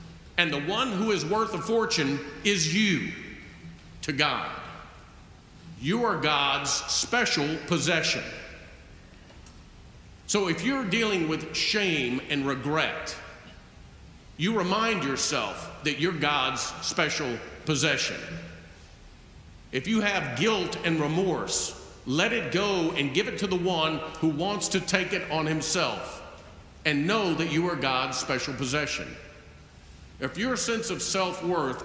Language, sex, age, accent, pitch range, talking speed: English, male, 50-69, American, 135-195 Hz, 130 wpm